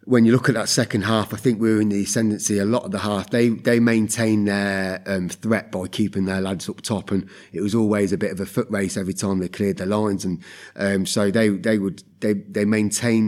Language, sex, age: English, male, 30-49